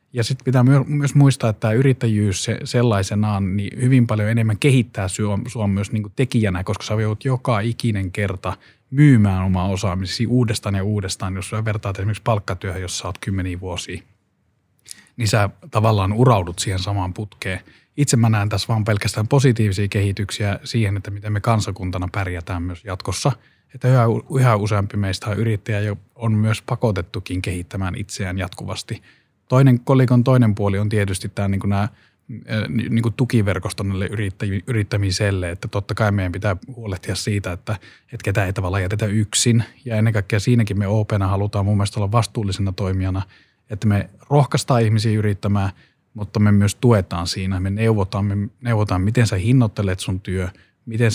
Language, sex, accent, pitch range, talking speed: Finnish, male, native, 100-115 Hz, 160 wpm